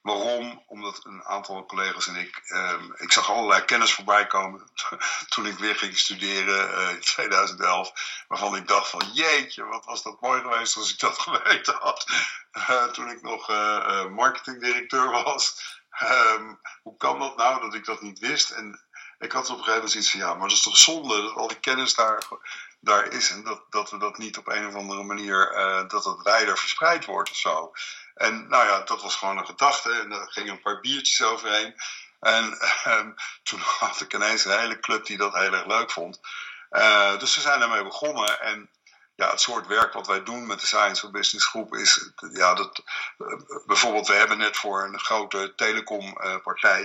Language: Dutch